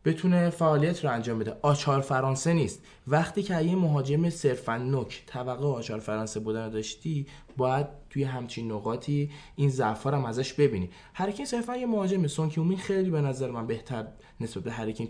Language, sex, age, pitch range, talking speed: Persian, male, 20-39, 110-150 Hz, 170 wpm